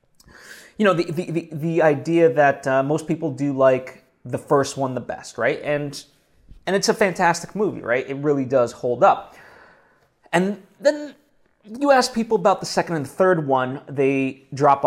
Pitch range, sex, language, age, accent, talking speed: 135-175 Hz, male, English, 30-49, American, 180 wpm